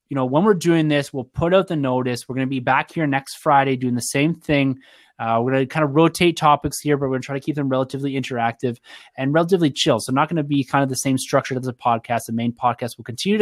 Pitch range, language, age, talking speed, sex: 120-145 Hz, English, 20-39, 280 wpm, male